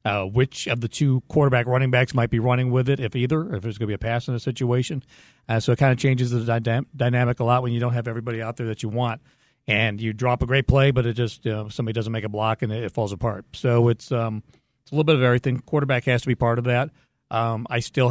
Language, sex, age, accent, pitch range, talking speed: English, male, 40-59, American, 115-130 Hz, 280 wpm